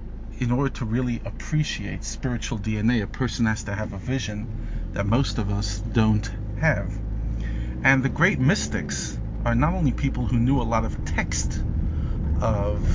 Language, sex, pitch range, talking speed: English, male, 100-120 Hz, 160 wpm